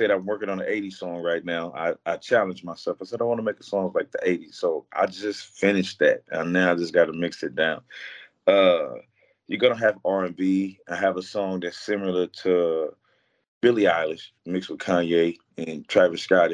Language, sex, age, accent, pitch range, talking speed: English, male, 30-49, American, 85-100 Hz, 210 wpm